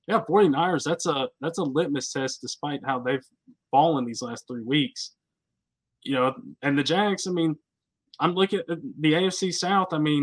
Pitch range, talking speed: 130-160 Hz, 180 wpm